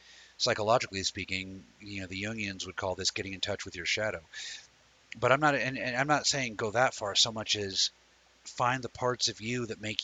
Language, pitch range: English, 95-120 Hz